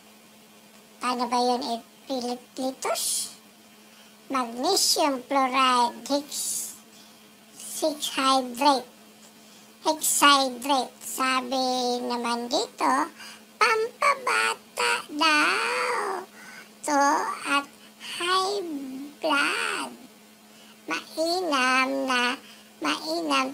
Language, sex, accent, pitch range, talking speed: English, male, Filipino, 245-300 Hz, 55 wpm